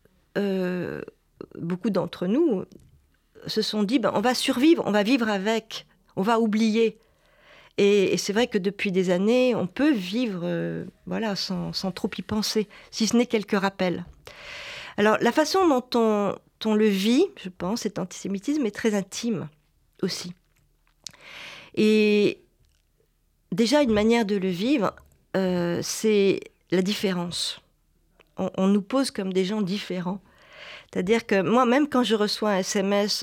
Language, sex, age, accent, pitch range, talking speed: French, female, 40-59, French, 180-225 Hz, 150 wpm